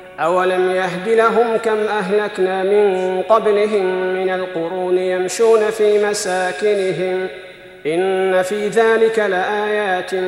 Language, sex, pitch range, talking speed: Arabic, male, 185-225 Hz, 95 wpm